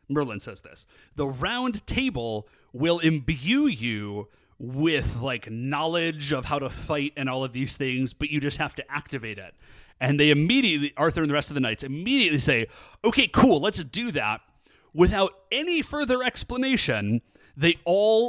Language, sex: English, male